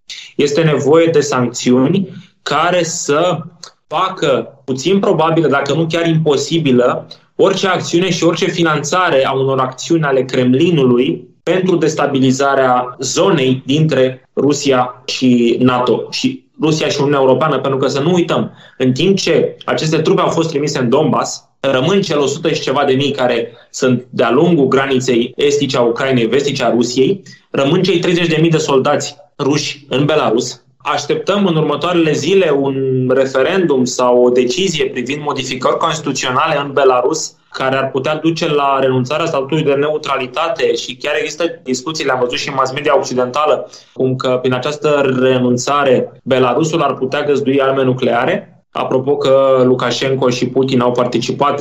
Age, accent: 20-39, native